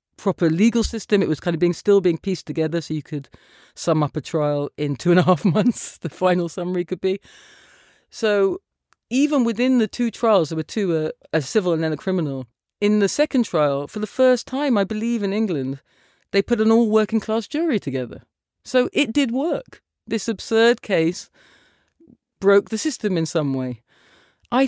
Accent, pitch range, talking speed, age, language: British, 160-215 Hz, 195 wpm, 40-59, English